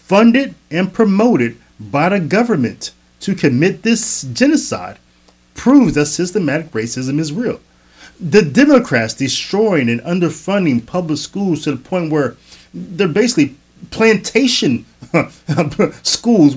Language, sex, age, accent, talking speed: English, male, 30-49, American, 110 wpm